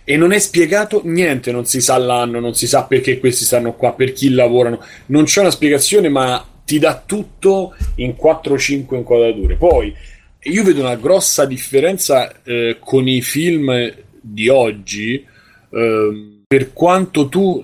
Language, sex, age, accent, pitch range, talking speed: Italian, male, 30-49, native, 115-155 Hz, 155 wpm